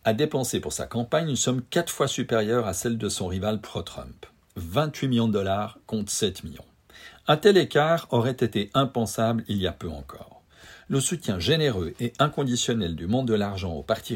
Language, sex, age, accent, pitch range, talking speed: French, male, 50-69, French, 95-130 Hz, 190 wpm